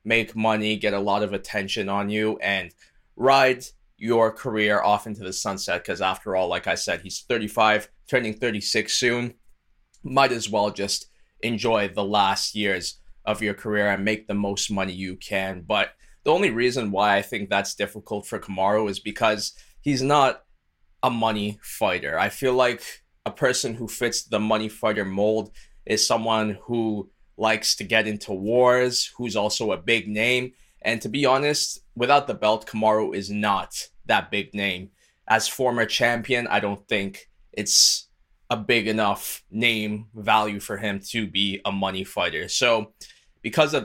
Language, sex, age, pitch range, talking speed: English, male, 20-39, 100-115 Hz, 170 wpm